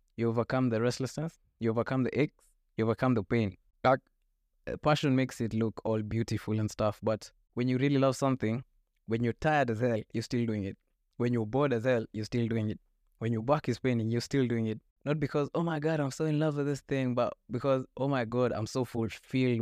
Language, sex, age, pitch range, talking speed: English, male, 20-39, 115-140 Hz, 225 wpm